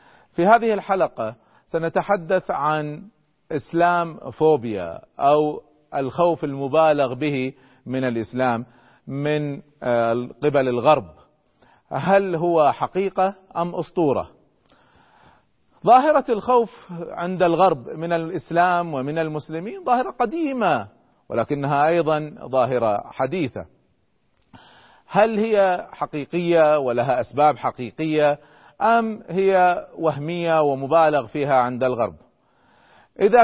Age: 40-59